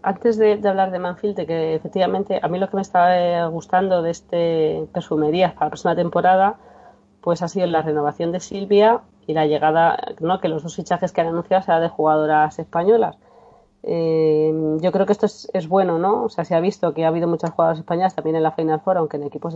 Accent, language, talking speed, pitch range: Spanish, Spanish, 225 wpm, 155-185 Hz